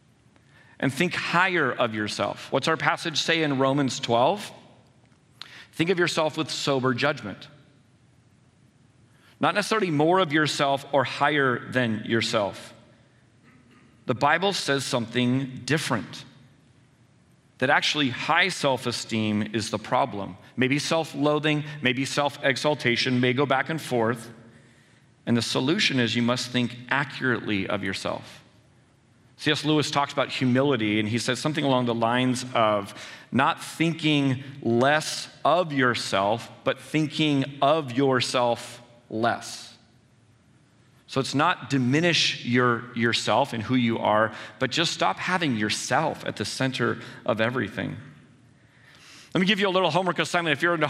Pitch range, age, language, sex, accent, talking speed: 120-150 Hz, 40-59, English, male, American, 135 wpm